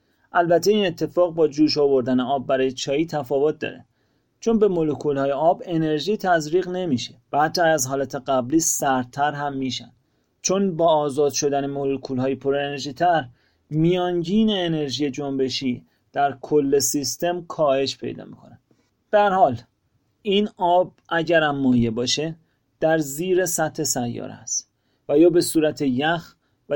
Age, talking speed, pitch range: 30-49, 135 wpm, 130-170 Hz